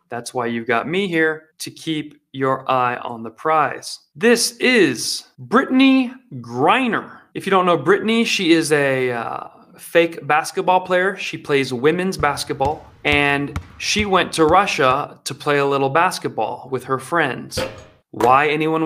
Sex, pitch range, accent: male, 130-160 Hz, American